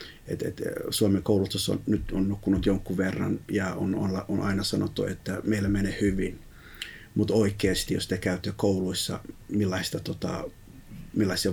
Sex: male